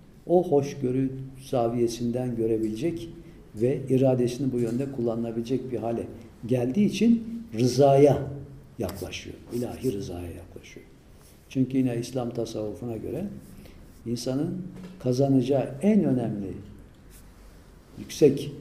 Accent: native